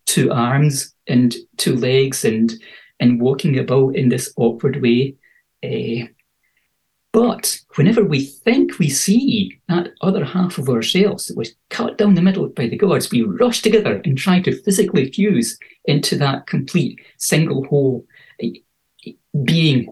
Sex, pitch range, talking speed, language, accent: male, 130-195 Hz, 145 wpm, English, British